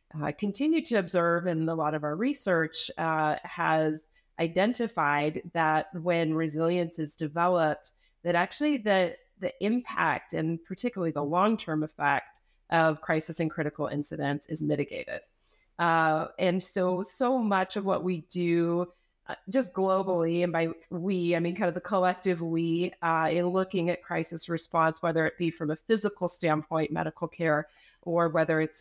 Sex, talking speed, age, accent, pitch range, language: female, 155 wpm, 30-49, American, 160-185 Hz, English